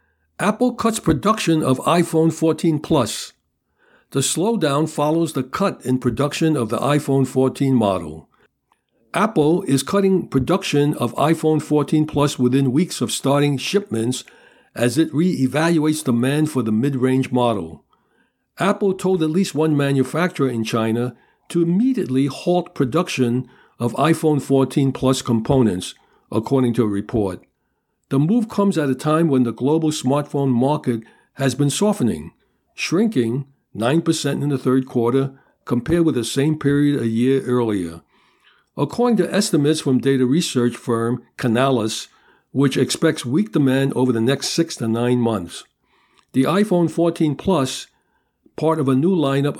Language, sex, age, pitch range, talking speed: English, male, 60-79, 125-160 Hz, 145 wpm